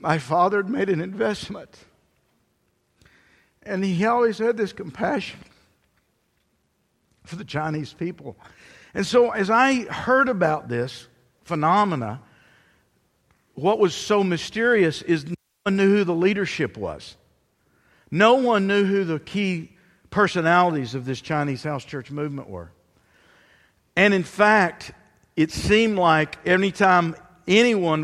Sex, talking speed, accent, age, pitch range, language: male, 125 wpm, American, 50-69, 145-200 Hz, English